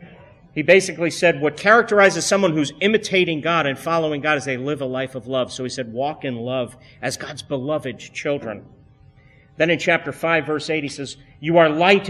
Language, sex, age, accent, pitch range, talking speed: English, male, 50-69, American, 135-180 Hz, 200 wpm